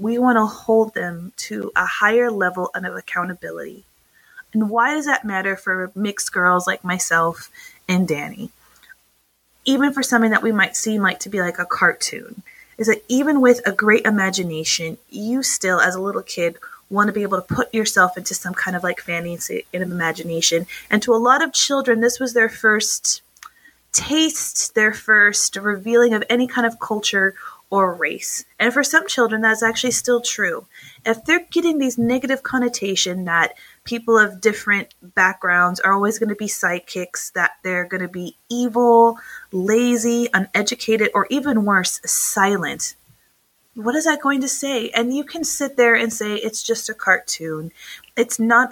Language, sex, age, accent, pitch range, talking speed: English, female, 20-39, American, 185-240 Hz, 170 wpm